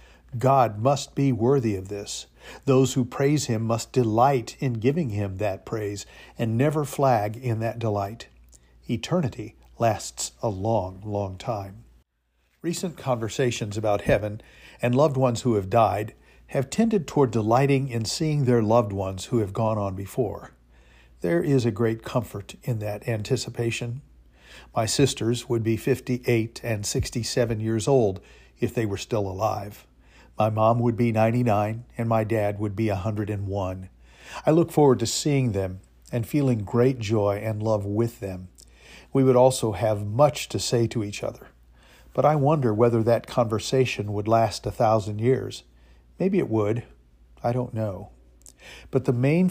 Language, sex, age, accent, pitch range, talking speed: English, male, 50-69, American, 100-130 Hz, 160 wpm